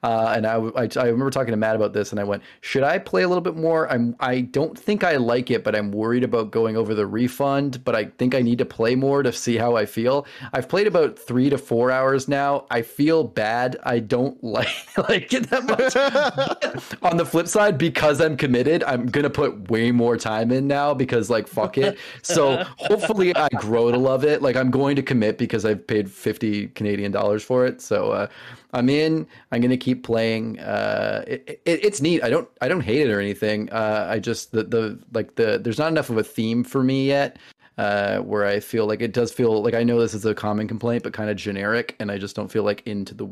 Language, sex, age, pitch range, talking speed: English, male, 30-49, 110-135 Hz, 240 wpm